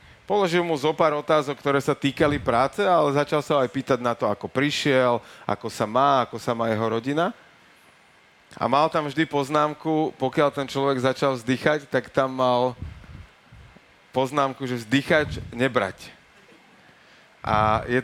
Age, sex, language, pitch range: 30-49, male, Slovak, 120-140 Hz